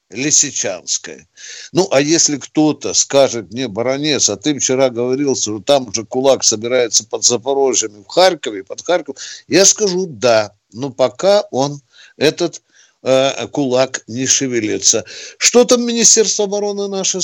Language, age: Russian, 60-79